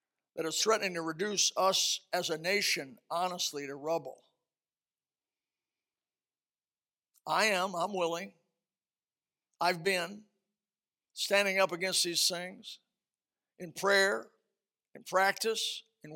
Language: English